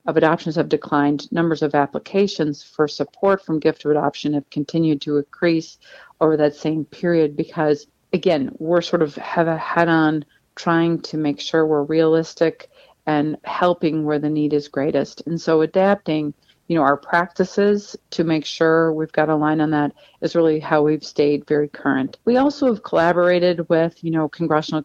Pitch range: 150-170 Hz